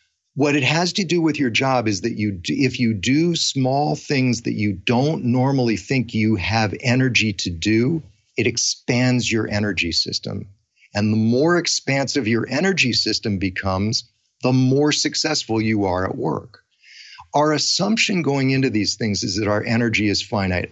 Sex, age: male, 40-59